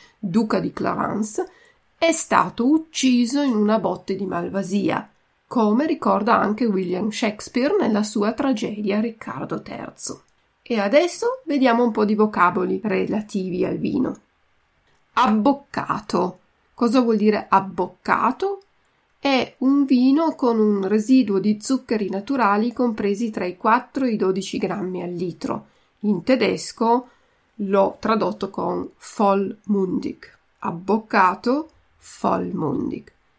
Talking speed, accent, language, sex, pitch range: 115 wpm, native, Italian, female, 200-260 Hz